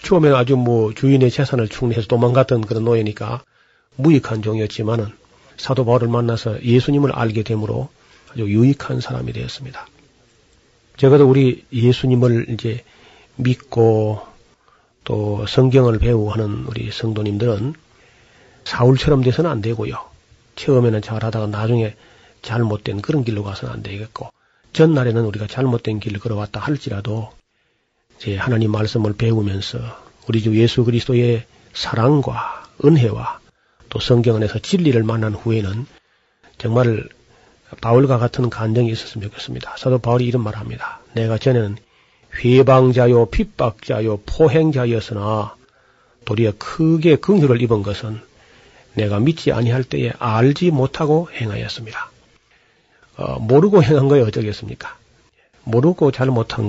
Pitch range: 110-130 Hz